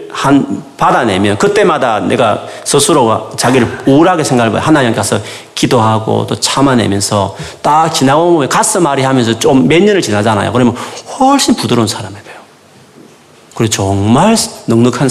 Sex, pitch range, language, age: male, 105-155 Hz, Korean, 40-59